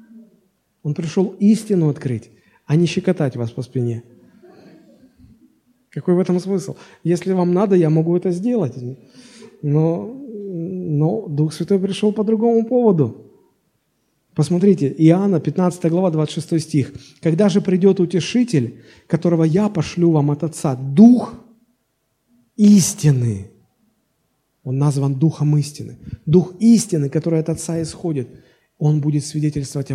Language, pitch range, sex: Russian, 145-195 Hz, male